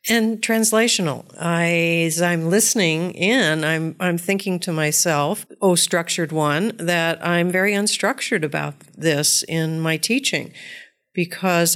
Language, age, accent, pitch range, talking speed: English, 50-69, American, 150-175 Hz, 130 wpm